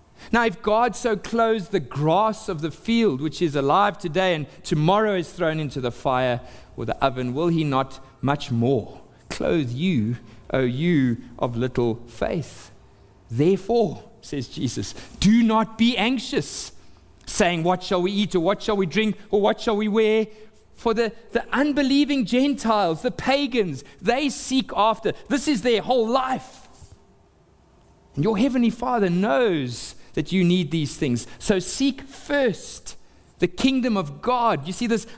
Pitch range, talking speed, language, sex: 135-220 Hz, 160 wpm, English, male